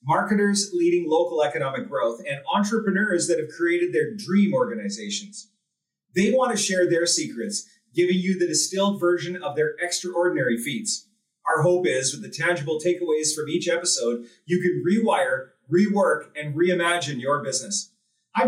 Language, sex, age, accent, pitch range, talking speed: English, male, 40-59, American, 170-215 Hz, 155 wpm